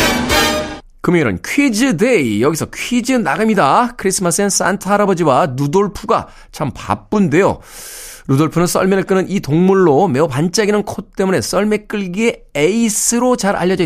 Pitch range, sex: 145-210 Hz, male